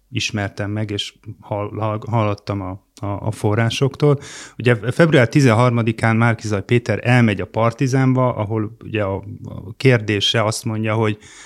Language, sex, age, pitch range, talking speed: Hungarian, male, 30-49, 105-130 Hz, 115 wpm